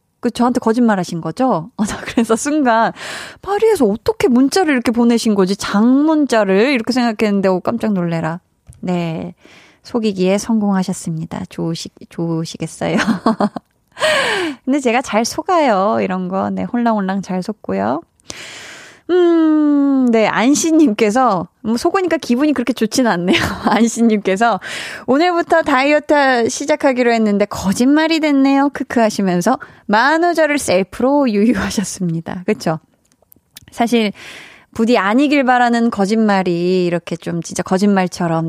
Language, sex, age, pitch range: Korean, female, 20-39, 195-275 Hz